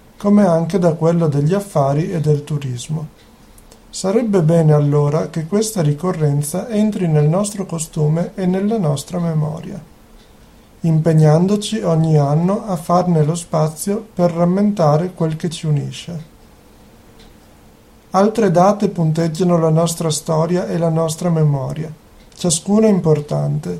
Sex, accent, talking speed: male, native, 120 wpm